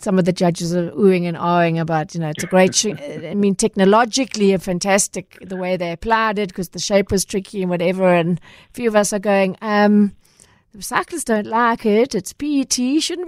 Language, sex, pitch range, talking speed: English, female, 190-235 Hz, 215 wpm